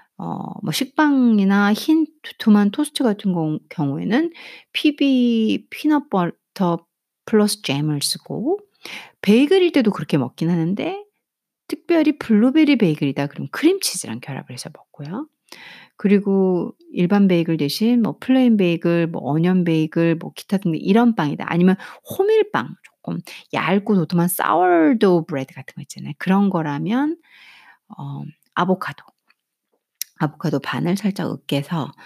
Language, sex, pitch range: Korean, female, 165-265 Hz